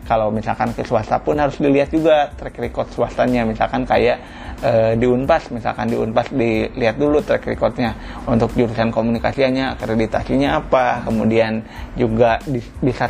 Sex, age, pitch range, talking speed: male, 30-49, 115-135 Hz, 145 wpm